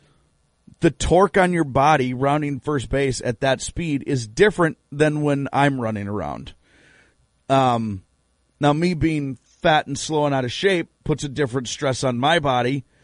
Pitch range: 130-170 Hz